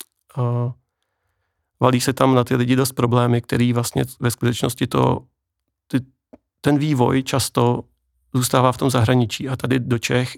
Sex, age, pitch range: male, 40-59, 120-130 Hz